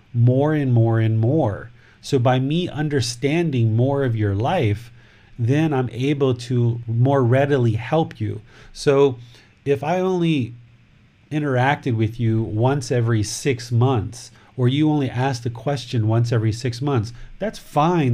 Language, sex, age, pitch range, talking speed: English, male, 40-59, 115-140 Hz, 145 wpm